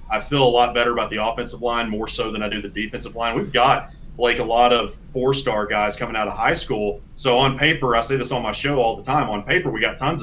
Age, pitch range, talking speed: 30-49, 120-145 Hz, 275 wpm